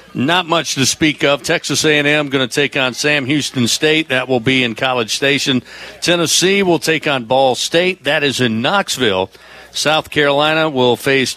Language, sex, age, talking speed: English, male, 50-69, 180 wpm